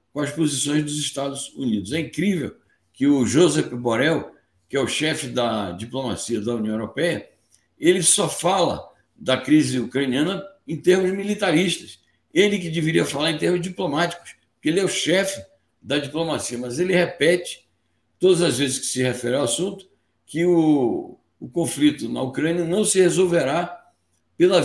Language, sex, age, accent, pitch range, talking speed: Portuguese, male, 60-79, Brazilian, 130-185 Hz, 160 wpm